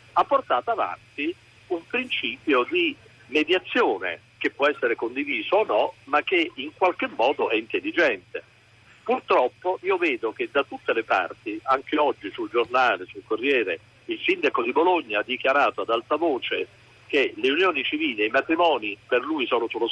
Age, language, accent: 50-69, Italian, native